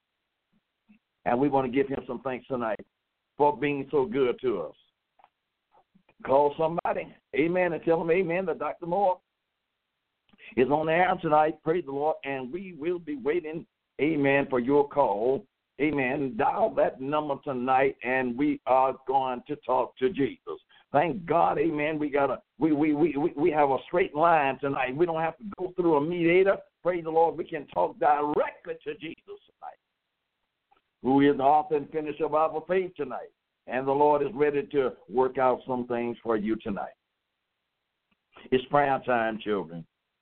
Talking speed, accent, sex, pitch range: 165 wpm, American, male, 130-170 Hz